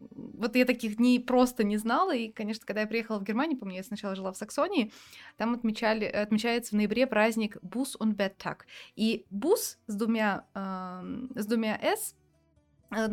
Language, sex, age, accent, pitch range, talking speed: Russian, female, 20-39, native, 220-275 Hz, 170 wpm